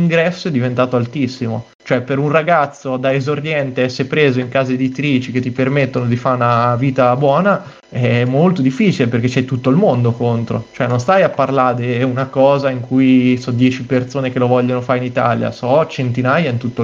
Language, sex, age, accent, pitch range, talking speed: Italian, male, 20-39, native, 125-145 Hz, 195 wpm